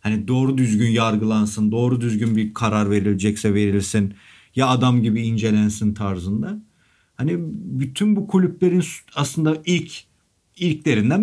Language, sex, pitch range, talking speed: Turkish, male, 105-150 Hz, 120 wpm